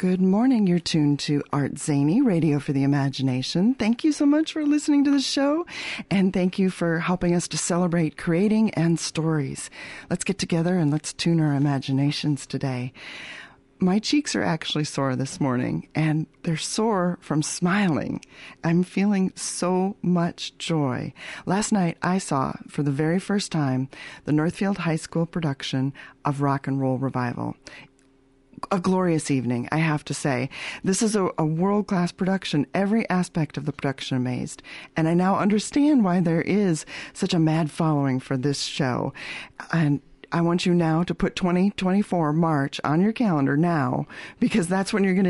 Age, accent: 40-59, American